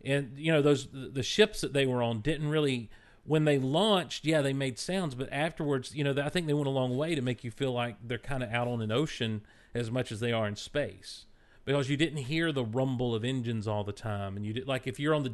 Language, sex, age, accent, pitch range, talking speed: English, male, 40-59, American, 110-140 Hz, 265 wpm